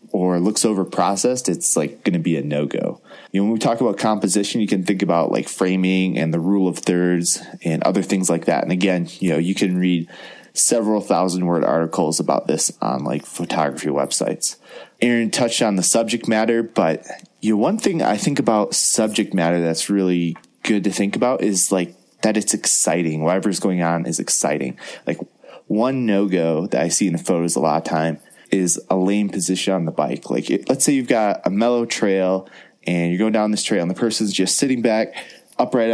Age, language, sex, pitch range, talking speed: 20-39, English, male, 85-105 Hz, 205 wpm